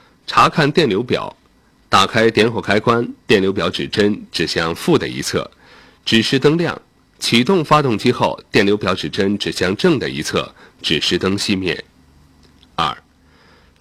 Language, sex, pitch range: Chinese, male, 95-125 Hz